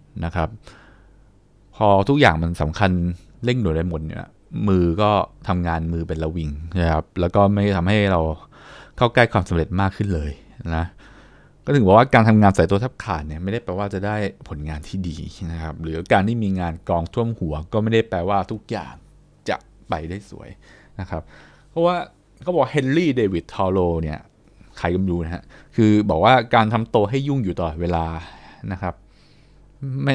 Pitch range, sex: 85-110 Hz, male